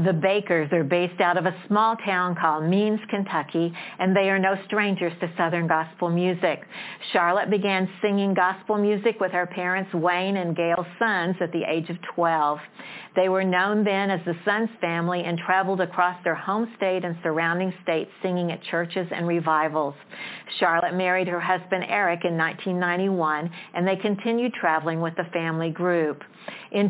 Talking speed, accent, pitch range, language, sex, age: 170 wpm, American, 170-195 Hz, English, female, 50-69